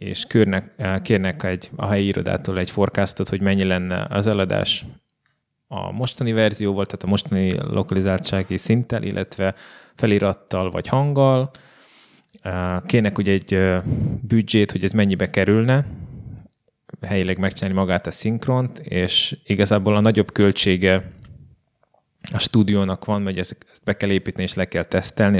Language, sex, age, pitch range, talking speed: Hungarian, male, 20-39, 95-110 Hz, 130 wpm